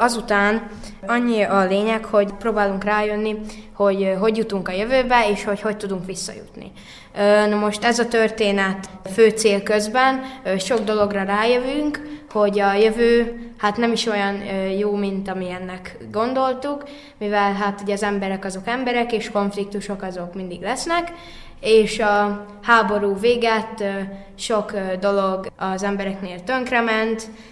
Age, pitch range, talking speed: 20-39, 195-225 Hz, 130 wpm